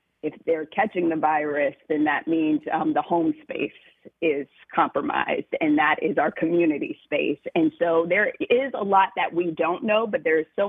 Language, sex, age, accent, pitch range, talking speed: English, female, 40-59, American, 165-220 Hz, 190 wpm